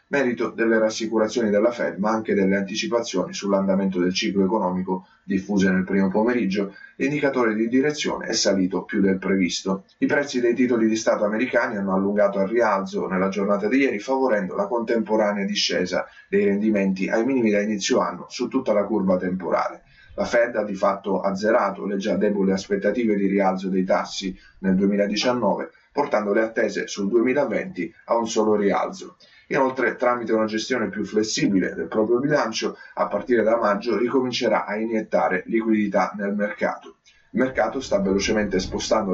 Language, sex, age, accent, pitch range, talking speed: Italian, male, 30-49, native, 95-115 Hz, 160 wpm